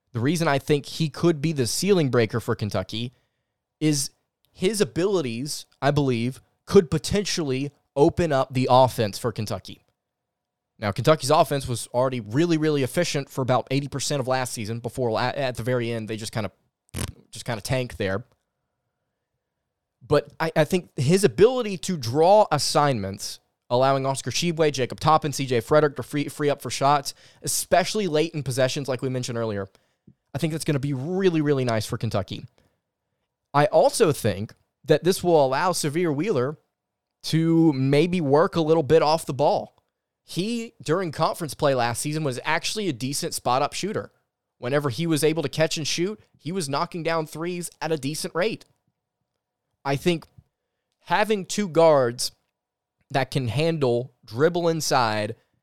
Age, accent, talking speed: 20-39, American, 165 wpm